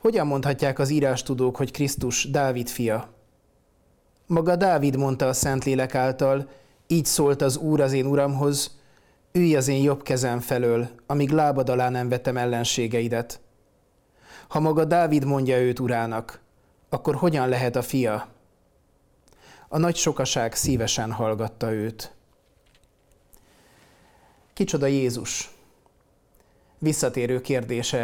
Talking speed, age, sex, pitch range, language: 115 wpm, 30-49, male, 120-145 Hz, Hungarian